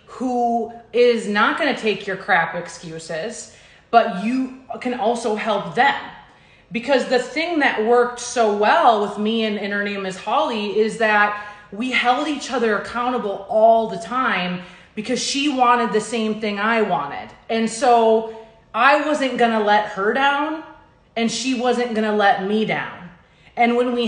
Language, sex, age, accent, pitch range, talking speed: English, female, 30-49, American, 210-250 Hz, 165 wpm